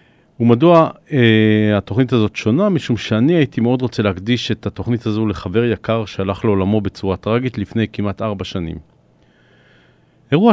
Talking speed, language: 140 wpm, Hebrew